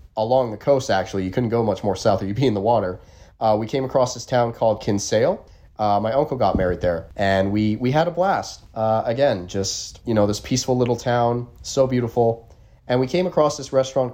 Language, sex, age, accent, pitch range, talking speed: English, male, 30-49, American, 95-125 Hz, 225 wpm